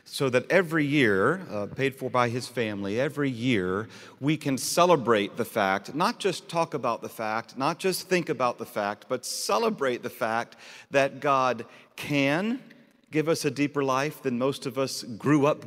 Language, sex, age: English, male, 40-59